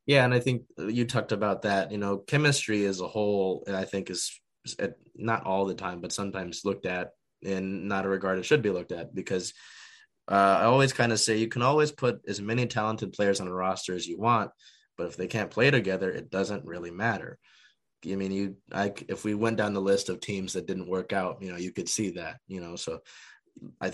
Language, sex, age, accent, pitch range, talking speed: English, male, 20-39, American, 95-110 Hz, 225 wpm